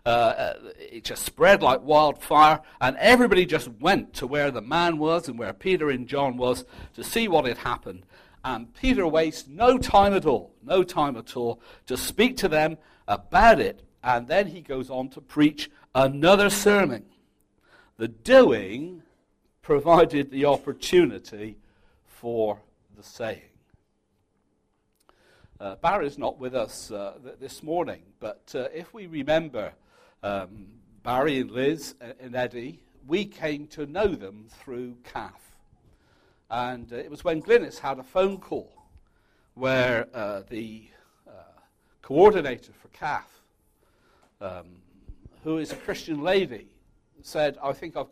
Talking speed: 140 wpm